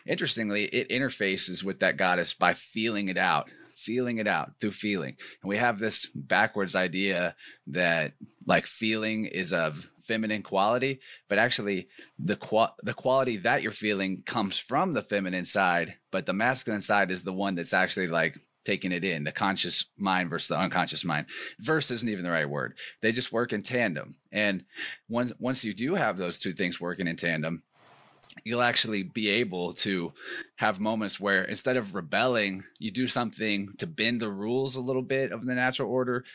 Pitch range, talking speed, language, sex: 95-110 Hz, 180 wpm, English, male